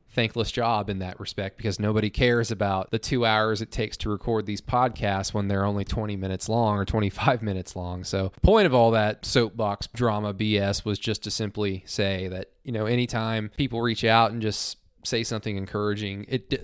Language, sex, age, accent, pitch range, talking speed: English, male, 20-39, American, 100-130 Hz, 195 wpm